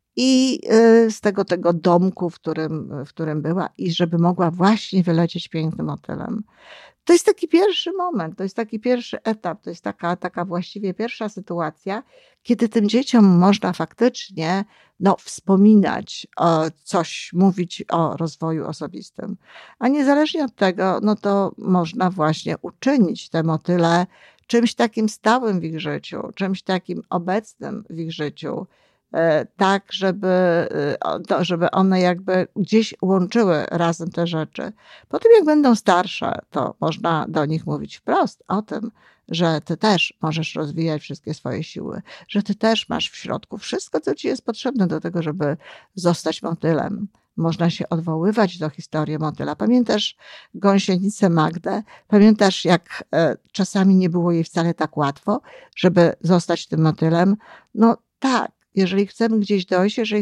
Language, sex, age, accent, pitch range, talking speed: Polish, female, 50-69, native, 170-215 Hz, 145 wpm